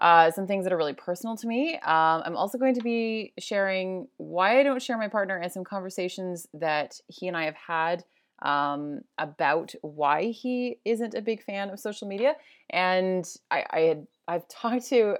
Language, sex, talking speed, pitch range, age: English, female, 195 wpm, 165-225 Hz, 20-39